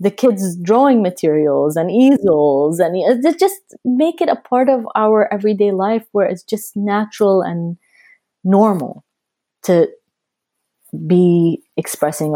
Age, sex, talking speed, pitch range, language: 30-49, female, 125 wpm, 155-220 Hz, English